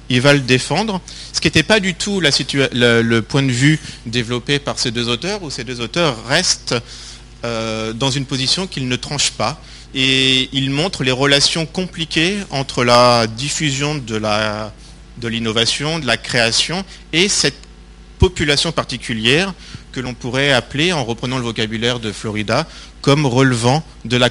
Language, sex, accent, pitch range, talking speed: French, male, French, 115-145 Hz, 170 wpm